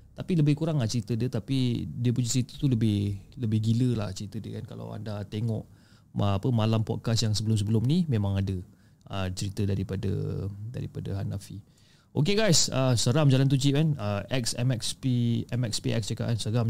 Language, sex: Malay, male